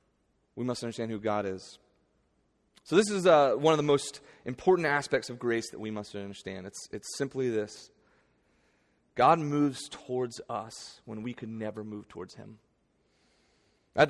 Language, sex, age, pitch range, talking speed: English, male, 30-49, 125-175 Hz, 160 wpm